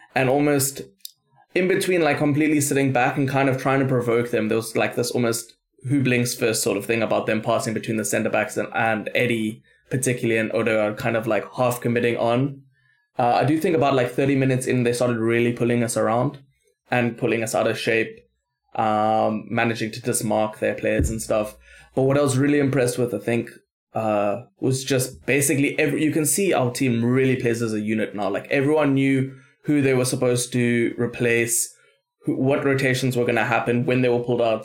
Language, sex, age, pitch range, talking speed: English, male, 20-39, 115-135 Hz, 205 wpm